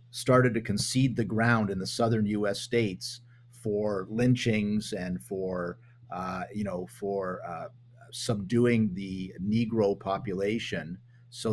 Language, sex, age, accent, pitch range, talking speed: English, male, 50-69, American, 100-120 Hz, 125 wpm